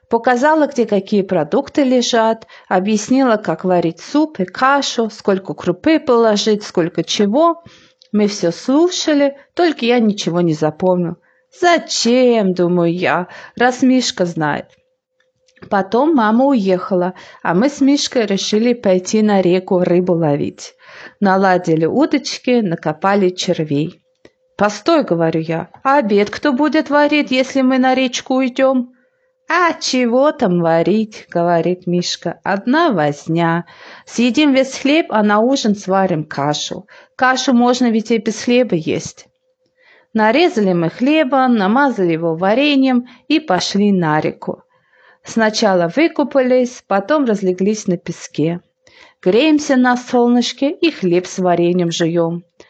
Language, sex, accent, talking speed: Ukrainian, female, native, 125 wpm